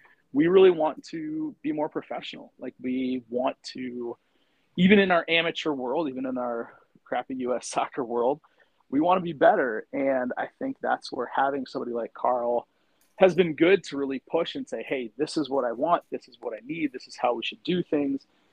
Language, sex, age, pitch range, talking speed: English, male, 30-49, 125-200 Hz, 205 wpm